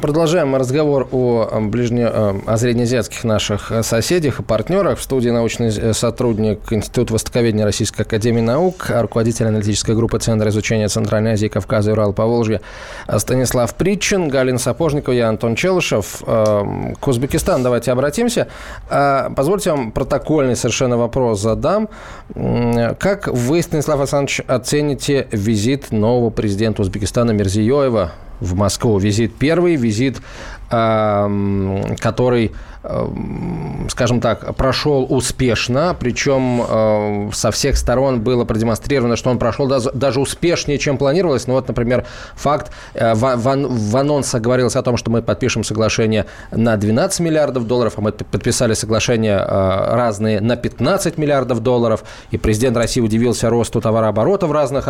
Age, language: 20-39, Russian